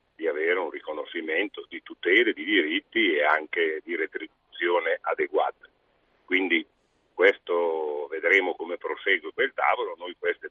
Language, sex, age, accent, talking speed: Italian, male, 50-69, native, 125 wpm